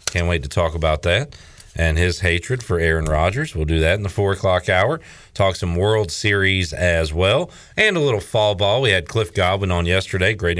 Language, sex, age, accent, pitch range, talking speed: English, male, 40-59, American, 85-105 Hz, 215 wpm